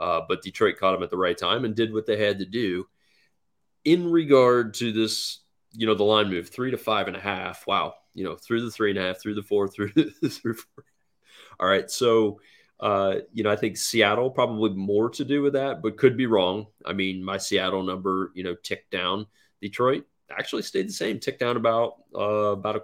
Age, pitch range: 30-49, 95-115 Hz